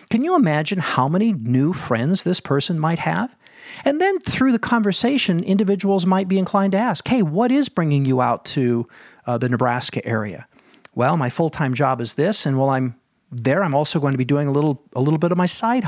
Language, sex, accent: English, male, American